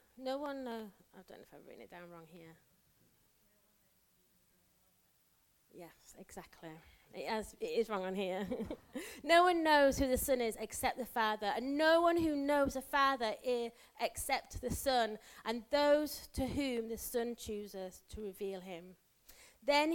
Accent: British